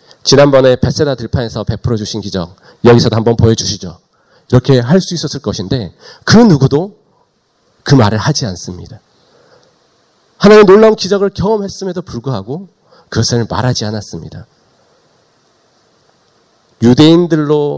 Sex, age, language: male, 40-59, Korean